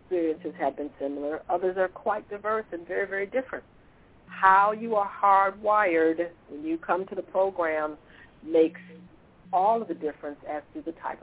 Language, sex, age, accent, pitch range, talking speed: English, female, 60-79, American, 160-200 Hz, 165 wpm